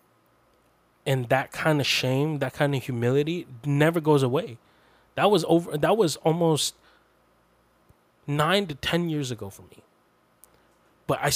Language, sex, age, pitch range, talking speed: English, male, 20-39, 120-160 Hz, 145 wpm